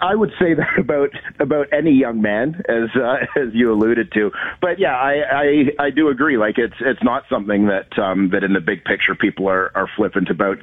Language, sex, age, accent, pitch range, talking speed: English, male, 40-59, American, 100-120 Hz, 220 wpm